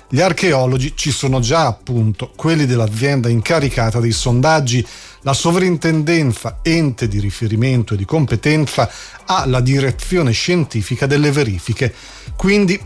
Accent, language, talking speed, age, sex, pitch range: Italian, English, 120 wpm, 40-59, male, 115-155 Hz